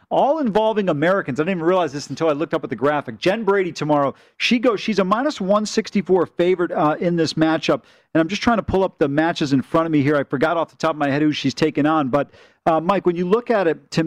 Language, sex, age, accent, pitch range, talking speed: English, male, 40-59, American, 160-190 Hz, 280 wpm